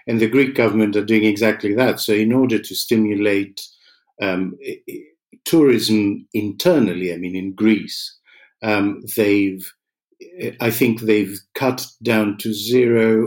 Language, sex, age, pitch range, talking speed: English, male, 50-69, 105-130 Hz, 130 wpm